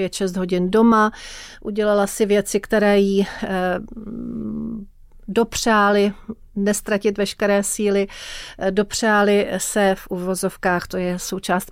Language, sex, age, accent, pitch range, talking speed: Czech, female, 40-59, native, 190-215 Hz, 95 wpm